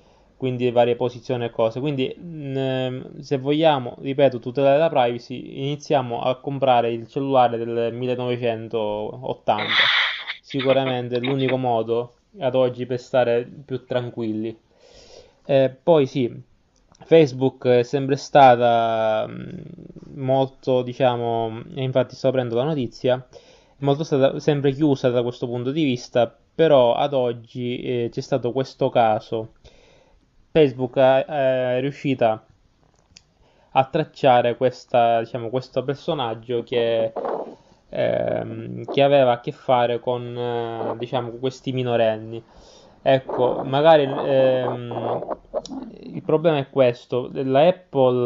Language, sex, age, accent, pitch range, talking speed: Italian, male, 20-39, native, 120-140 Hz, 110 wpm